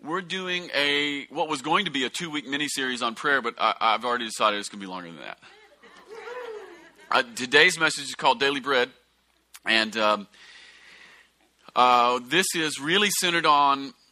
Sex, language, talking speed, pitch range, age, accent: male, English, 170 wpm, 110-145 Hz, 30-49, American